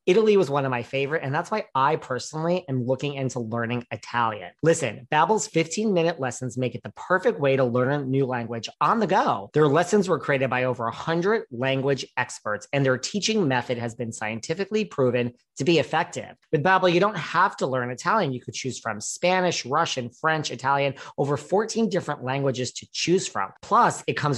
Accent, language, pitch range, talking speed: American, English, 125-165 Hz, 195 wpm